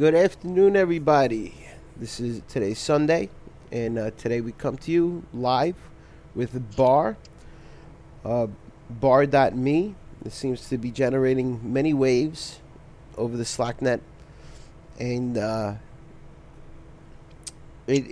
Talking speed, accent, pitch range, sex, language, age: 110 wpm, American, 115-150 Hz, male, English, 30-49